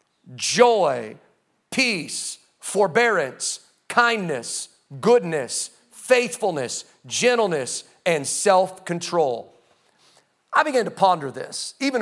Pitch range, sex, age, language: 185-285 Hz, male, 40-59, English